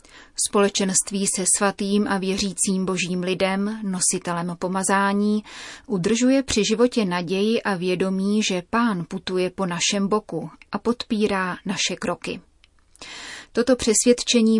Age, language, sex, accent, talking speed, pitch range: 30-49, Czech, female, native, 110 wpm, 185-210 Hz